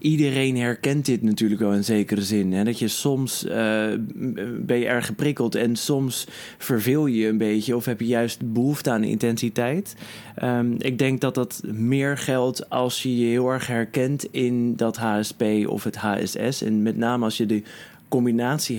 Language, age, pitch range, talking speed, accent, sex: Dutch, 20-39, 115-135 Hz, 180 wpm, Dutch, male